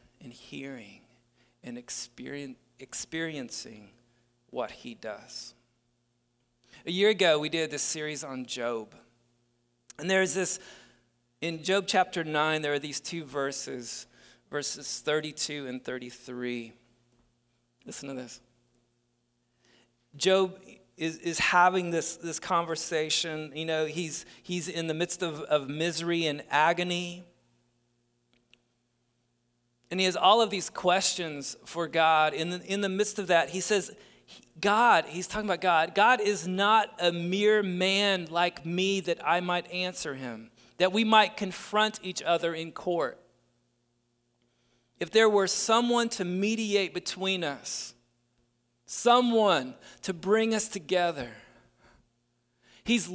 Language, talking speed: English, 125 wpm